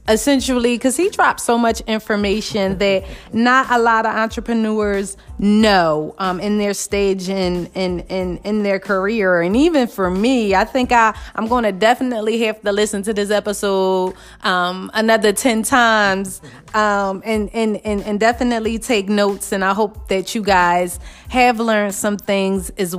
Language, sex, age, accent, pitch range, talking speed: English, female, 30-49, American, 190-225 Hz, 170 wpm